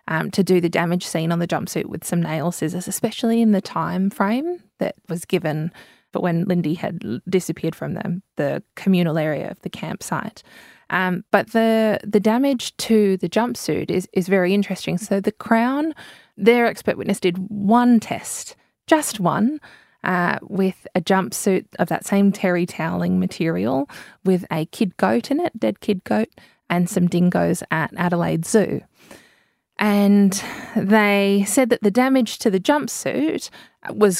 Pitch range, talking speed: 175-215 Hz, 165 wpm